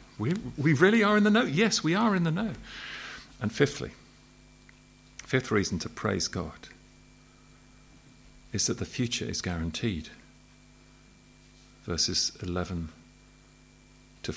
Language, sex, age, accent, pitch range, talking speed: English, male, 50-69, British, 90-125 Hz, 120 wpm